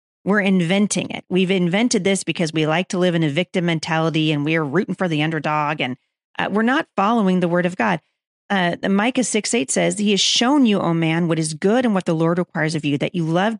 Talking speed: 240 wpm